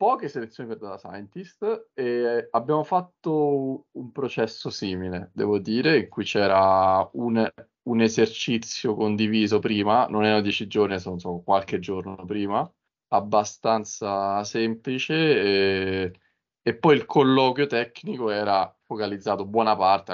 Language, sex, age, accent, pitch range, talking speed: Italian, male, 20-39, native, 90-110 Hz, 125 wpm